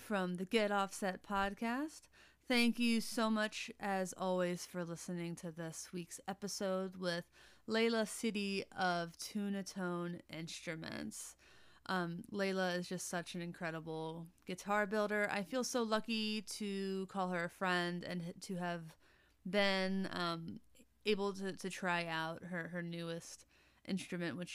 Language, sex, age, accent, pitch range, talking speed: English, female, 30-49, American, 175-205 Hz, 140 wpm